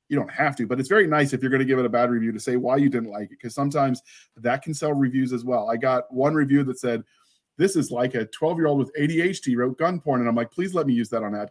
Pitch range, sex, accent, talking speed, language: 120-145 Hz, male, American, 305 wpm, English